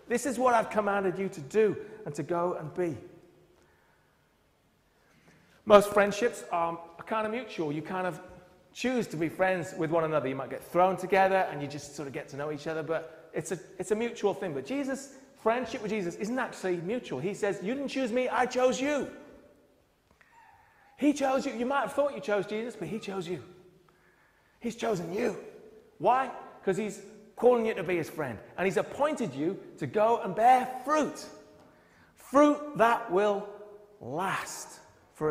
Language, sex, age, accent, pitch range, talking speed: English, male, 30-49, British, 170-245 Hz, 185 wpm